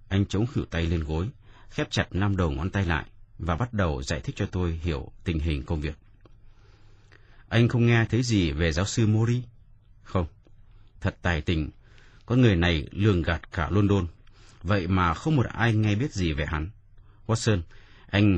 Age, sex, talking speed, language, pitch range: 30-49, male, 185 wpm, Vietnamese, 90-110 Hz